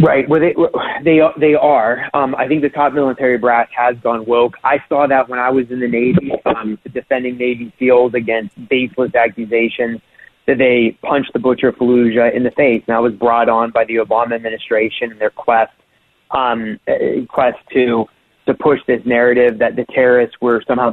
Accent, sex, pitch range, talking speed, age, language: American, male, 115-130 Hz, 190 wpm, 30-49, English